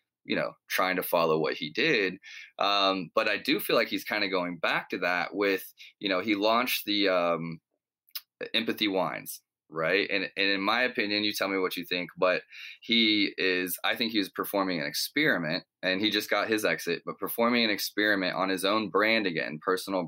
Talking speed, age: 205 wpm, 20-39